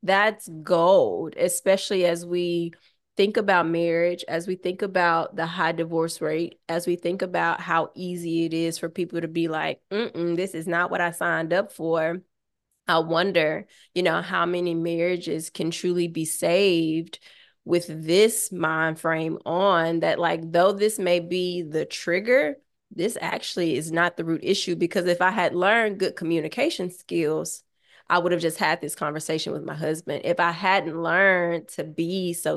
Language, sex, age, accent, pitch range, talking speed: English, female, 20-39, American, 165-185 Hz, 175 wpm